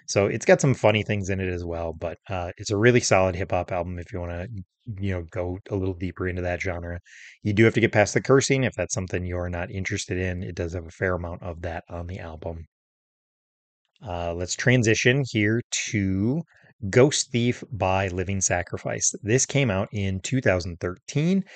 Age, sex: 30-49, male